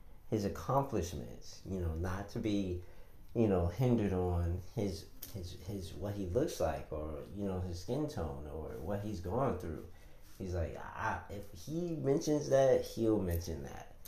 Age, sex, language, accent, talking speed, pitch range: 30-49, male, English, American, 160 wpm, 85-110 Hz